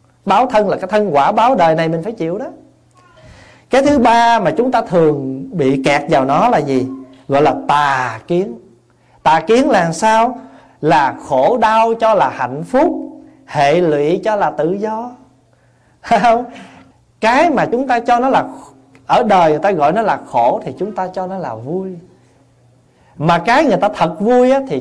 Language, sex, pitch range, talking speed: Vietnamese, male, 140-235 Hz, 185 wpm